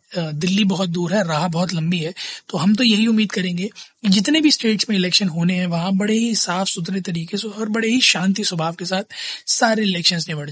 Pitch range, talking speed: 175-215 Hz, 215 wpm